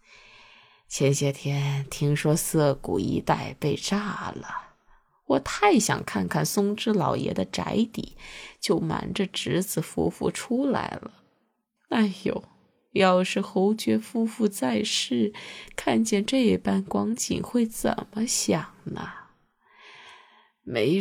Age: 20-39